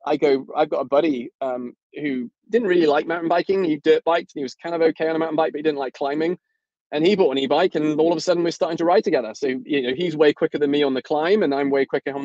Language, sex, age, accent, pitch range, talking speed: English, male, 20-39, British, 140-175 Hz, 305 wpm